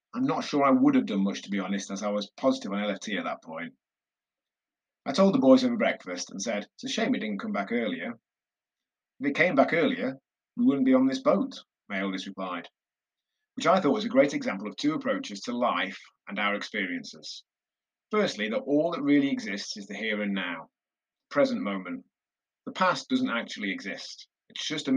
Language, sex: English, male